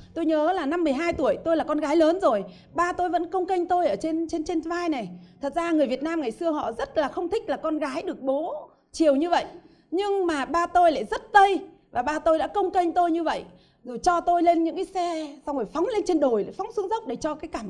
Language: Vietnamese